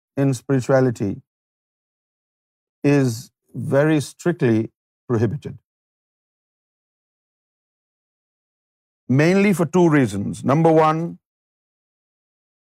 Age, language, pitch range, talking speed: 50-69, Urdu, 125-160 Hz, 55 wpm